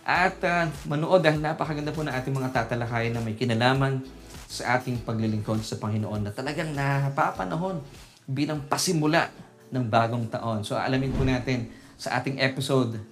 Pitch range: 120-145 Hz